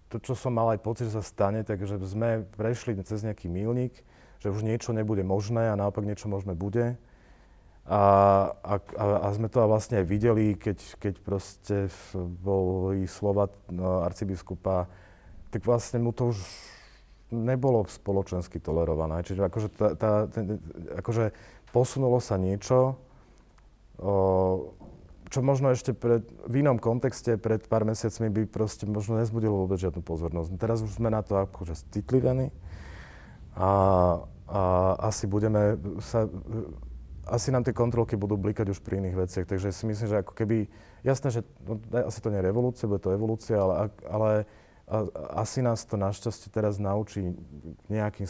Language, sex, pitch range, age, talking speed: Slovak, male, 95-115 Hz, 40-59, 155 wpm